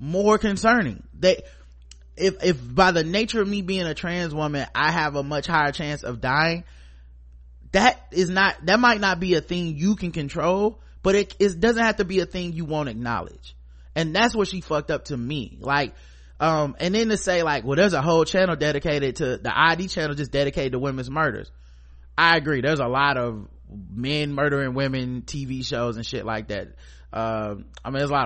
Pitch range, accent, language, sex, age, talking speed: 120-175 Hz, American, English, male, 20-39, 210 wpm